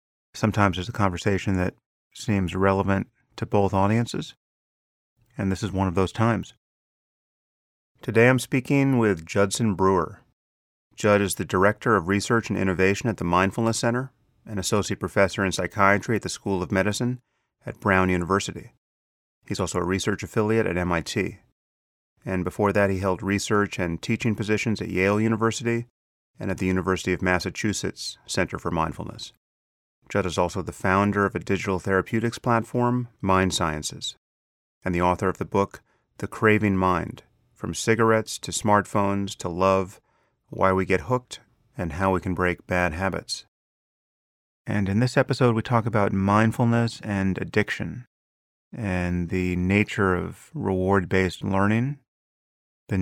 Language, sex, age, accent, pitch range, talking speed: English, male, 30-49, American, 90-115 Hz, 150 wpm